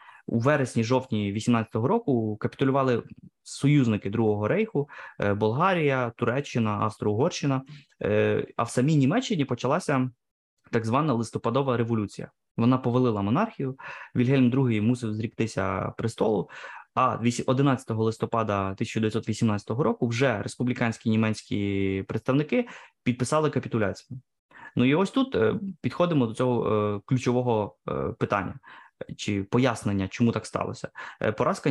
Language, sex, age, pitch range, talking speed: Ukrainian, male, 20-39, 110-135 Hz, 100 wpm